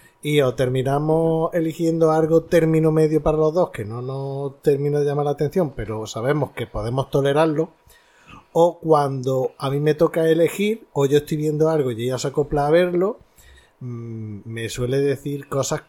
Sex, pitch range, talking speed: male, 120-155 Hz, 175 wpm